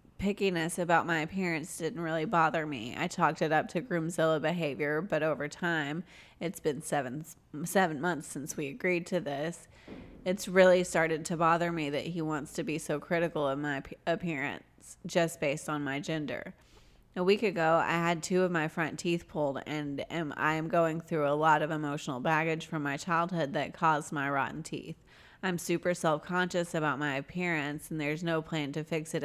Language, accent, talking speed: English, American, 185 wpm